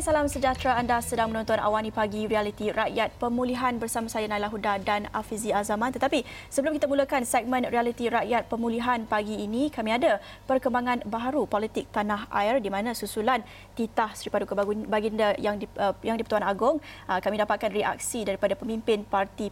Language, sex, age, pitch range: Malay, female, 20-39, 205-245 Hz